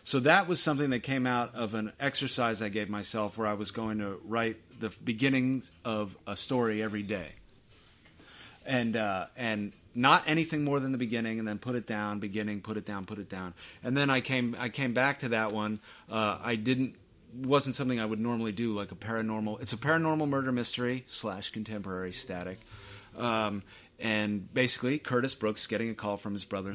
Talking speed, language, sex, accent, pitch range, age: 195 wpm, English, male, American, 105-125 Hz, 30-49